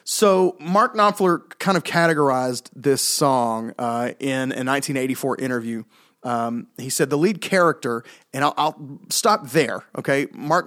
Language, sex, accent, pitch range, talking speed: English, male, American, 125-155 Hz, 145 wpm